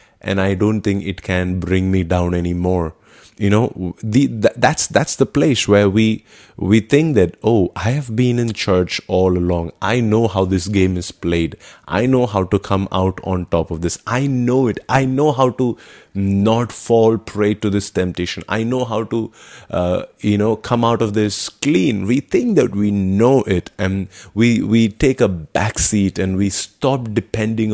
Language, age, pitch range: English, 30-49, 95-110 Hz